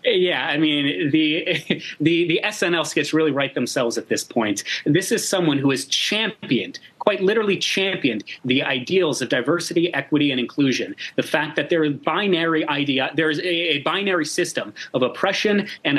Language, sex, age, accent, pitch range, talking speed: English, male, 30-49, American, 150-200 Hz, 175 wpm